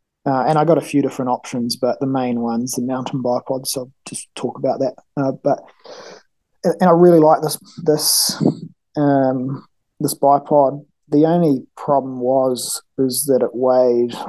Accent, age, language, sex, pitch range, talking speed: Australian, 20-39, English, male, 125-145 Hz, 170 wpm